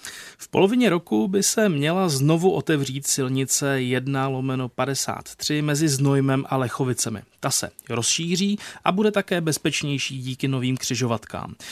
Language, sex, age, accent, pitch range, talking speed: Czech, male, 30-49, native, 130-170 Hz, 125 wpm